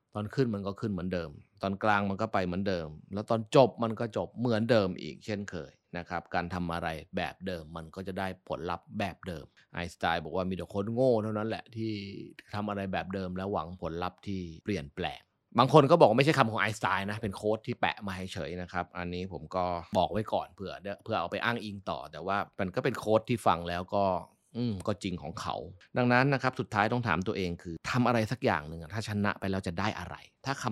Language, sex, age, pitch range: Thai, male, 20-39, 90-115 Hz